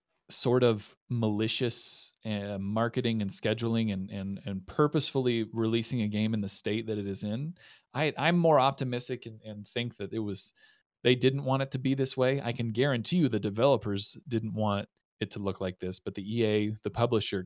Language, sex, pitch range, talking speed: English, male, 100-125 Hz, 195 wpm